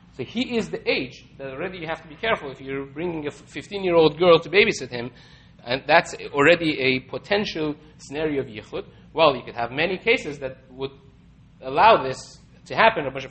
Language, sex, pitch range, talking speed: English, male, 135-170 Hz, 200 wpm